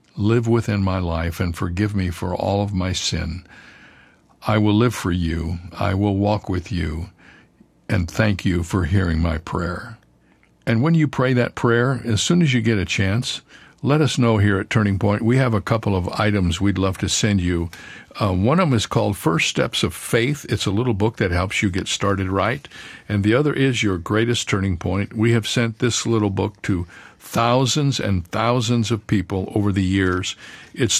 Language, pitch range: English, 95-115 Hz